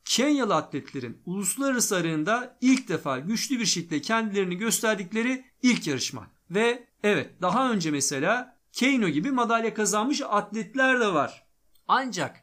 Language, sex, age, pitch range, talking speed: Turkish, male, 50-69, 155-240 Hz, 125 wpm